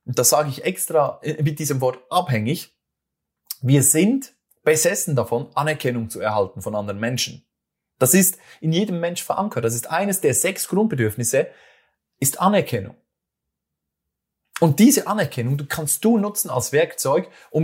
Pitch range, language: 125-180 Hz, German